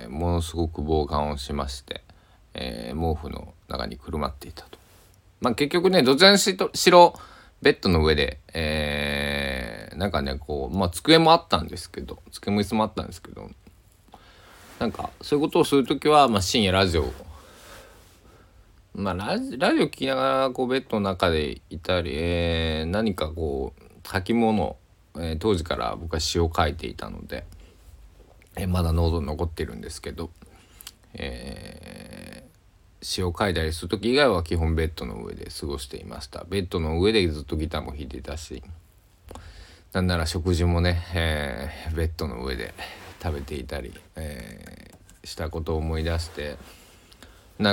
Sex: male